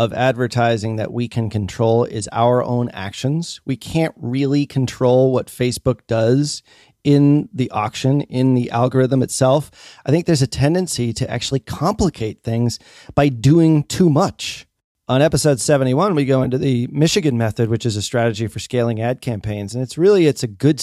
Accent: American